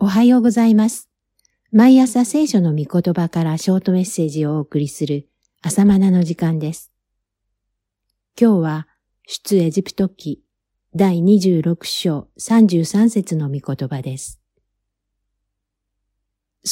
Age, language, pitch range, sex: 50-69, Japanese, 135-195 Hz, female